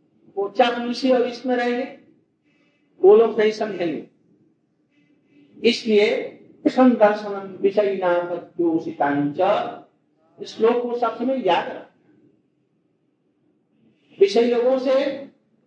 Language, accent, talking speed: Hindi, native, 50 wpm